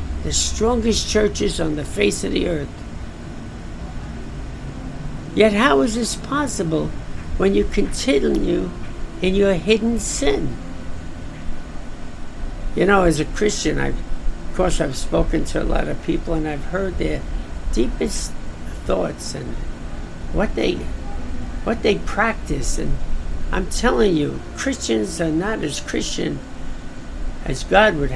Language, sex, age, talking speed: English, male, 60-79, 130 wpm